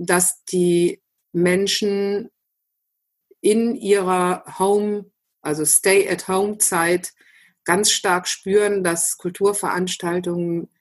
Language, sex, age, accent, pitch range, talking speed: German, female, 50-69, German, 180-220 Hz, 90 wpm